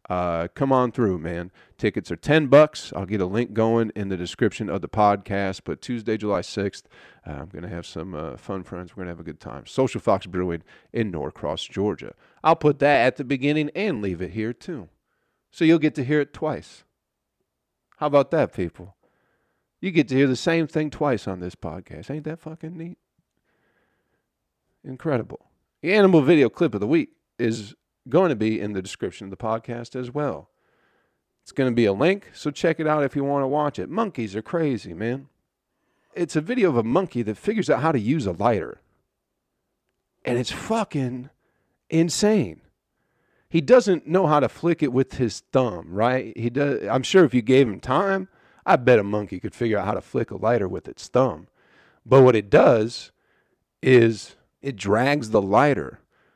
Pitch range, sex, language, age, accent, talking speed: 100-150 Hz, male, English, 40-59, American, 195 wpm